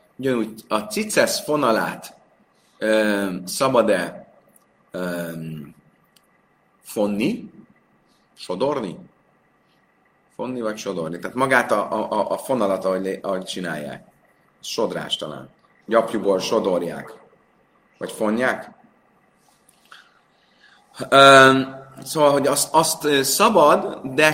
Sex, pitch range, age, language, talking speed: male, 95-150 Hz, 30-49, Hungarian, 85 wpm